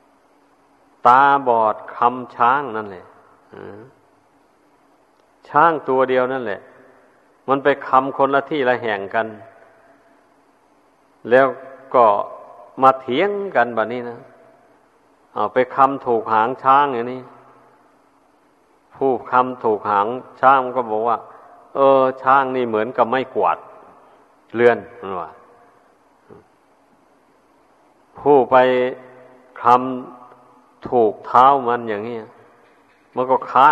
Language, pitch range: Thai, 120-135 Hz